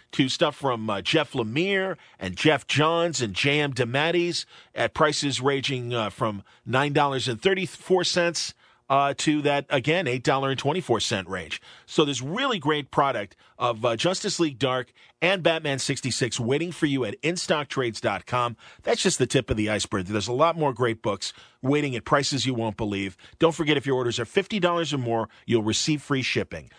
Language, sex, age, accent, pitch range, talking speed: English, male, 40-59, American, 125-155 Hz, 165 wpm